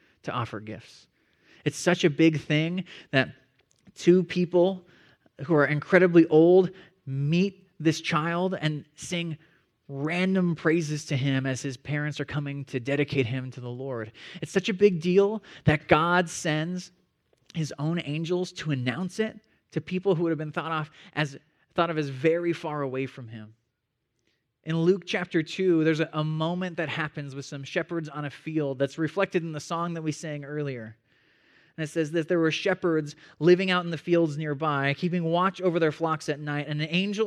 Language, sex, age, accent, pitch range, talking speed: English, male, 30-49, American, 150-180 Hz, 180 wpm